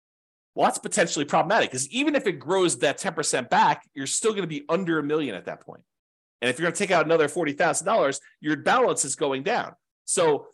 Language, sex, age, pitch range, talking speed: English, male, 40-59, 120-165 Hz, 215 wpm